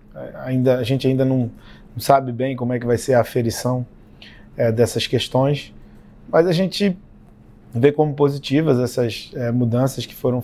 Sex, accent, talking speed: male, Brazilian, 160 wpm